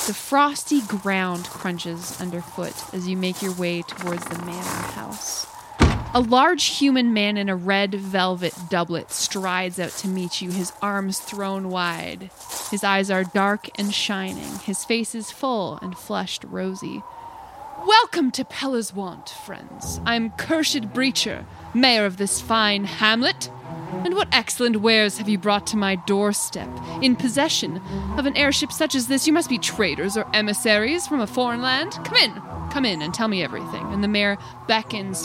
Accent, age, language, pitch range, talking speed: American, 20-39, English, 190-245 Hz, 165 wpm